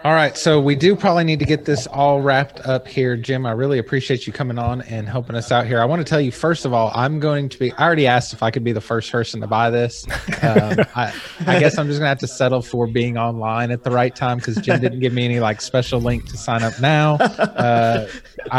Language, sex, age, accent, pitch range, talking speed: English, male, 20-39, American, 115-130 Hz, 265 wpm